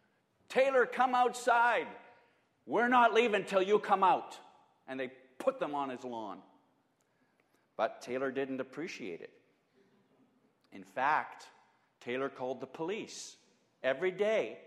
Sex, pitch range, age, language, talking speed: male, 130-180 Hz, 50-69, English, 125 wpm